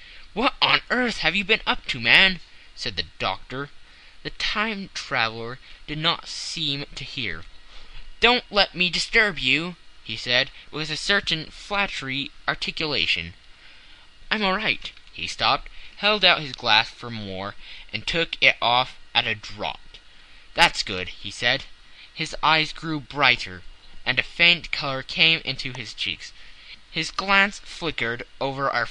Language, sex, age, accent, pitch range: Korean, male, 10-29, American, 120-175 Hz